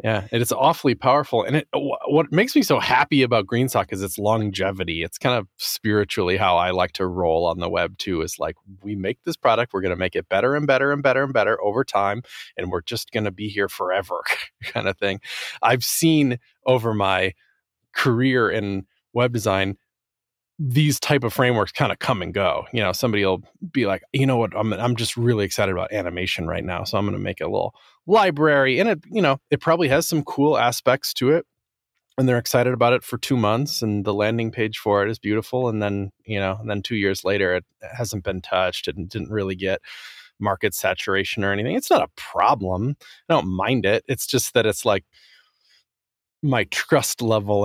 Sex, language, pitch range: male, English, 100-130 Hz